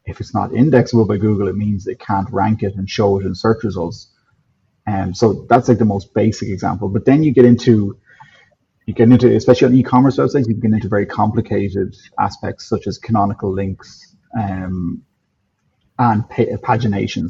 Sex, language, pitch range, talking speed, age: male, English, 100-120 Hz, 185 wpm, 30-49